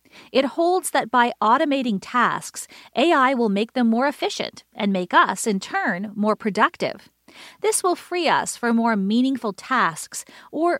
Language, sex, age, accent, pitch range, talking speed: English, female, 40-59, American, 205-295 Hz, 155 wpm